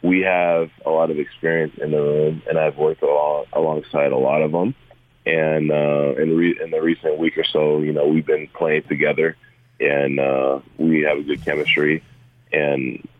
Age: 20-39